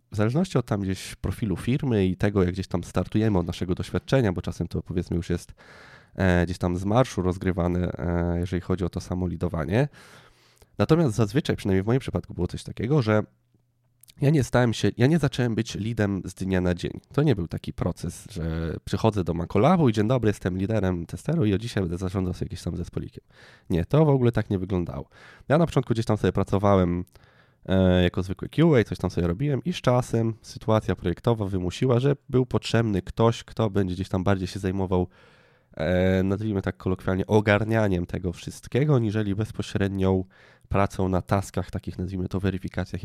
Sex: male